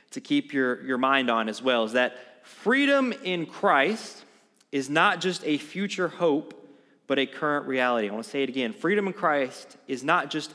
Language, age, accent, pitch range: English, 30-49, American, 130-185 Hz